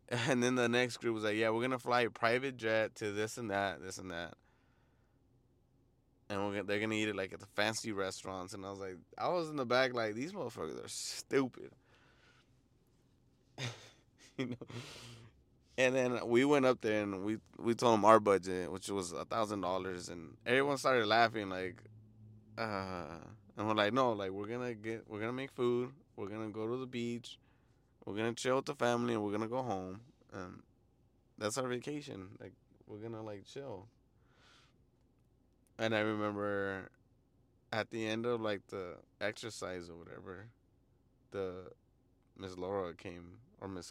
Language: English